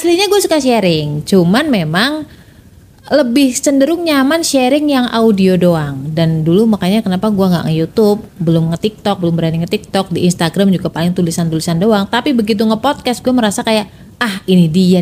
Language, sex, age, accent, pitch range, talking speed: Indonesian, female, 30-49, native, 185-250 Hz, 160 wpm